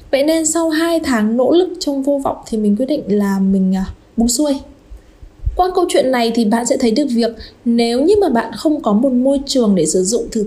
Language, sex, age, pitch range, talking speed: Vietnamese, female, 20-39, 210-280 Hz, 230 wpm